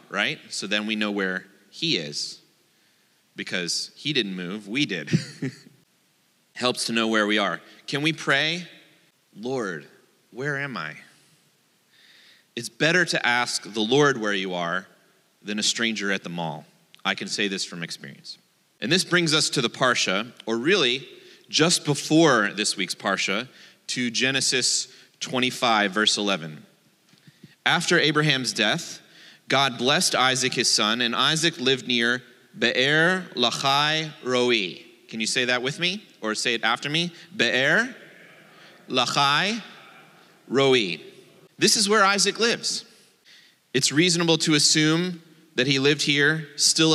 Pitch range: 115-160 Hz